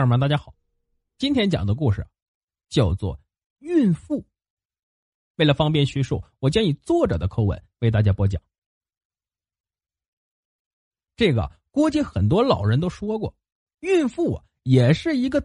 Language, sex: Chinese, male